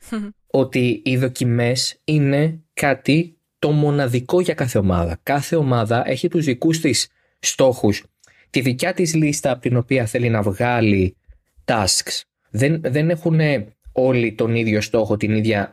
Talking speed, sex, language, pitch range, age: 140 wpm, male, Greek, 105-145 Hz, 20-39